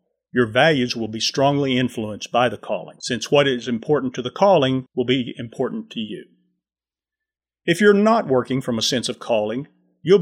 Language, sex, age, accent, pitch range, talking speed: English, male, 40-59, American, 115-160 Hz, 180 wpm